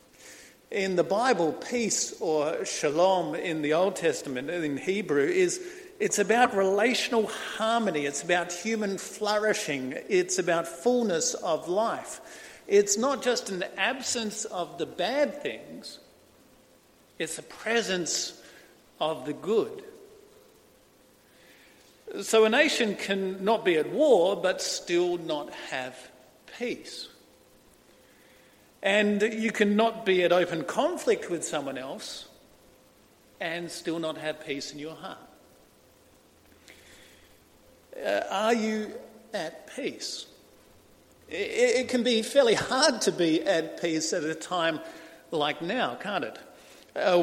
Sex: male